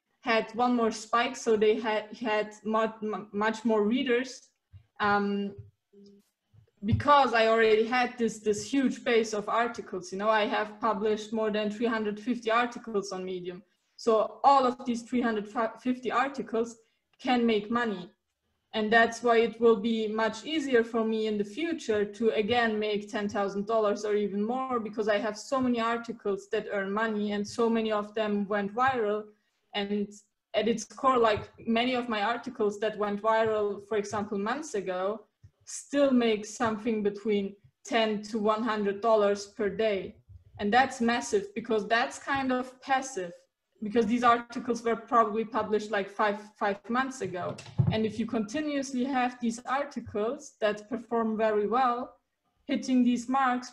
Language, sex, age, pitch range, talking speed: English, female, 20-39, 210-240 Hz, 150 wpm